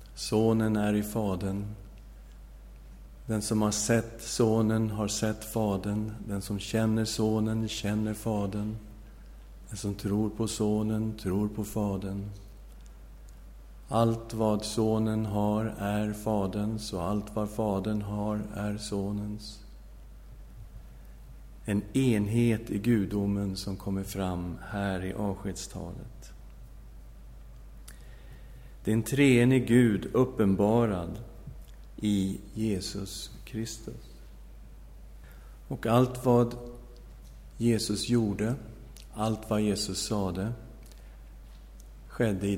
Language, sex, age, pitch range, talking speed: Swedish, male, 50-69, 90-110 Hz, 95 wpm